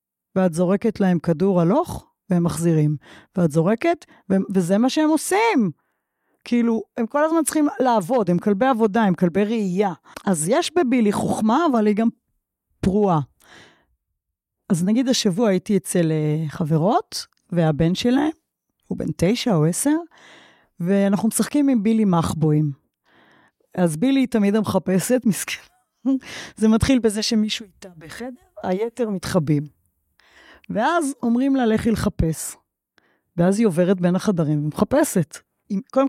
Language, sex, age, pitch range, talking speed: Hebrew, female, 30-49, 180-245 Hz, 130 wpm